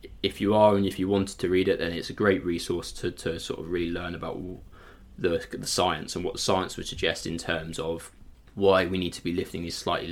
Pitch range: 90-100 Hz